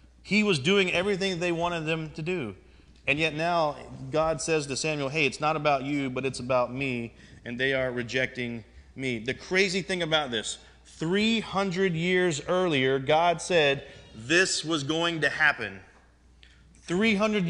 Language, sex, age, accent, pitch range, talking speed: English, male, 30-49, American, 135-175 Hz, 160 wpm